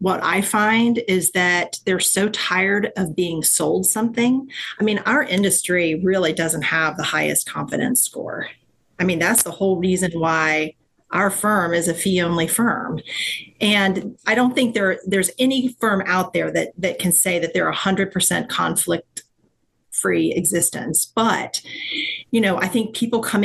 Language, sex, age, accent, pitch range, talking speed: English, female, 40-59, American, 180-230 Hz, 155 wpm